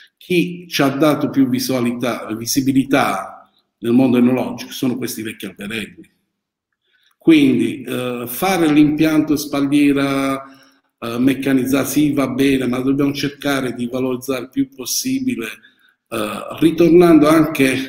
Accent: native